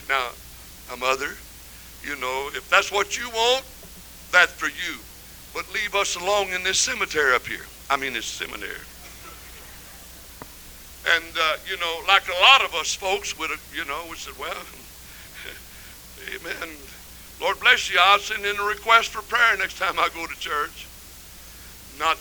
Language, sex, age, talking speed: English, male, 60-79, 160 wpm